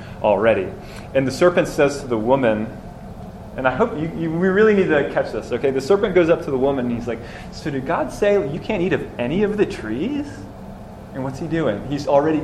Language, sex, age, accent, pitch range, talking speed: English, male, 30-49, American, 120-170 Hz, 230 wpm